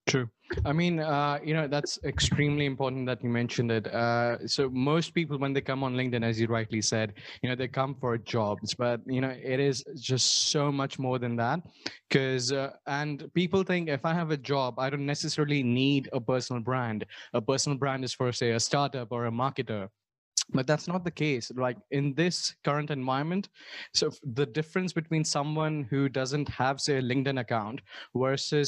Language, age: English, 20-39